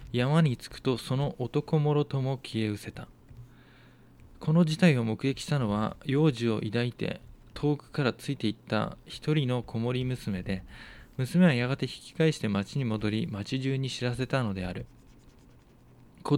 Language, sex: Japanese, male